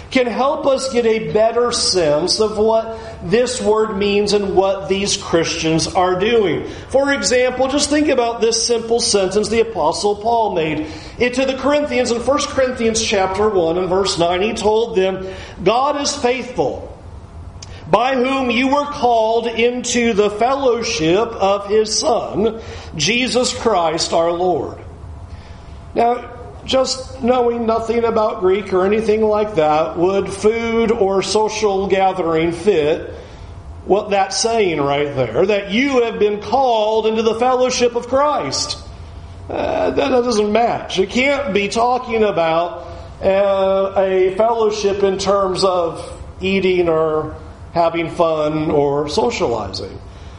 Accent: American